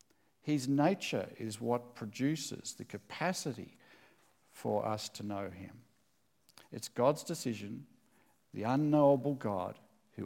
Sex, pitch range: male, 120-175 Hz